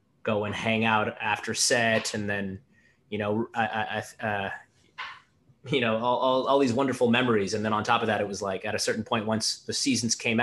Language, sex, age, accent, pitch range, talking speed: English, male, 20-39, American, 105-125 Hz, 220 wpm